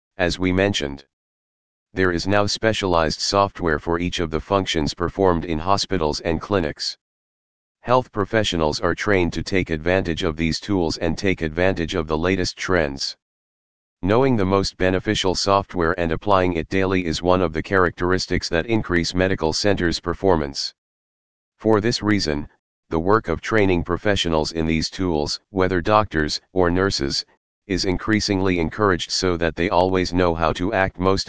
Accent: American